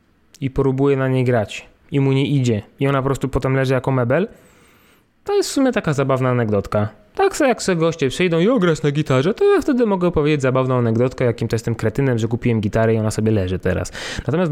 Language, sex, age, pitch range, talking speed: Polish, male, 20-39, 110-145 Hz, 225 wpm